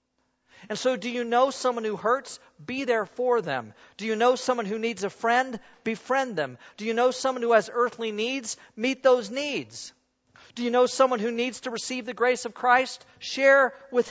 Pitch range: 160-240 Hz